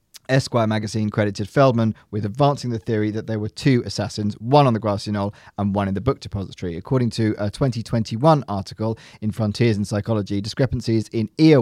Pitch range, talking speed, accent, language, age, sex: 105-120 Hz, 185 wpm, British, English, 40-59, male